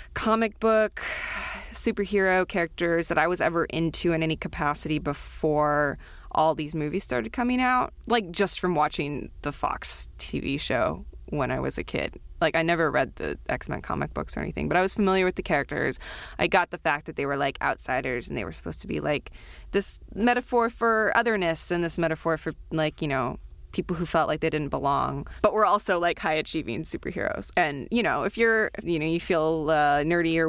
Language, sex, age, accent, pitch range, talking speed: English, female, 20-39, American, 155-195 Hz, 200 wpm